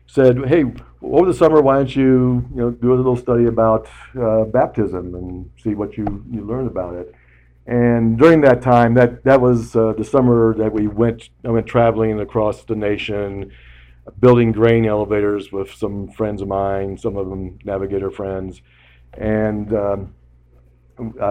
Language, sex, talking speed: English, male, 170 wpm